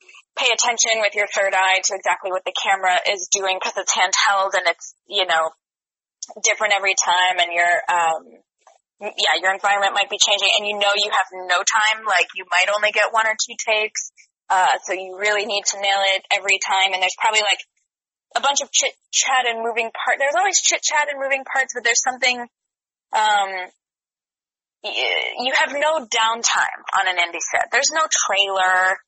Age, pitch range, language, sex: 20-39, 185-230 Hz, English, female